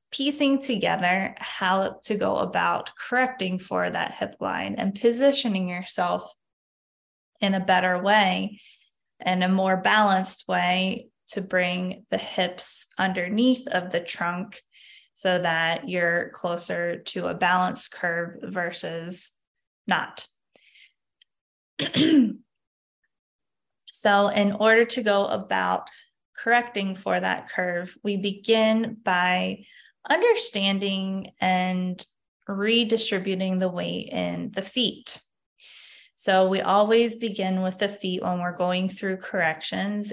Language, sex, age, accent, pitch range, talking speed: English, female, 20-39, American, 185-225 Hz, 110 wpm